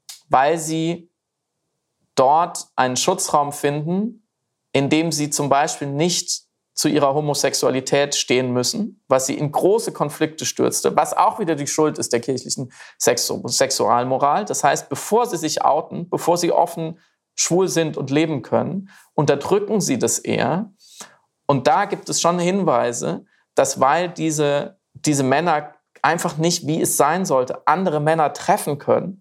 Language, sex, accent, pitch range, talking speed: German, male, German, 140-170 Hz, 150 wpm